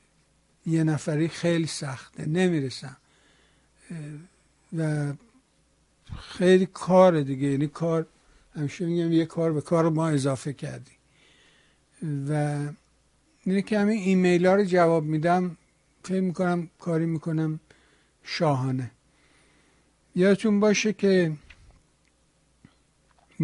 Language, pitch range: Persian, 145-180 Hz